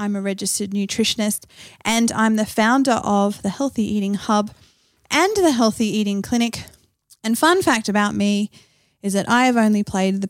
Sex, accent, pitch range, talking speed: female, Australian, 190-235 Hz, 175 wpm